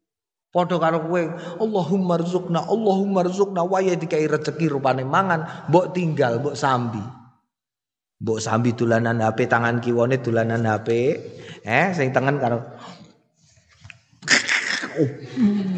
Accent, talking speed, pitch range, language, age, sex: native, 110 wpm, 150-190 Hz, Indonesian, 30-49, male